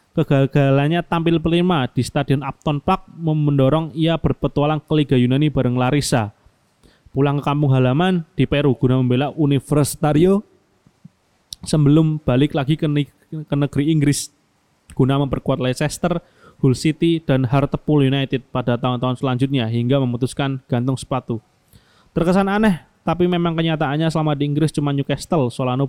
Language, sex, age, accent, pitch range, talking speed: Indonesian, male, 20-39, native, 130-155 Hz, 130 wpm